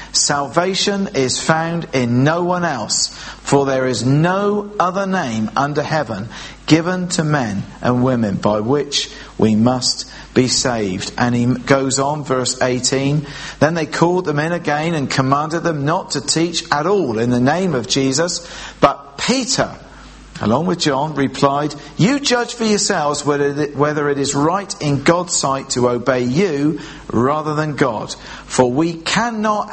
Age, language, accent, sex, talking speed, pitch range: 50-69, English, British, male, 155 wpm, 115-165 Hz